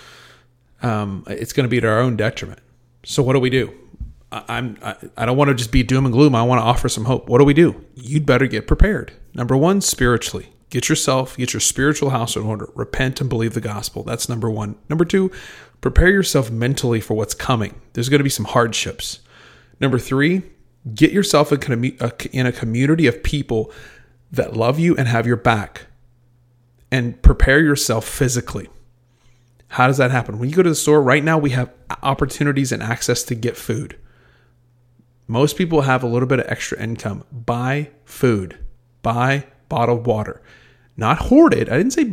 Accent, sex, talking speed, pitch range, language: American, male, 195 wpm, 120-145 Hz, English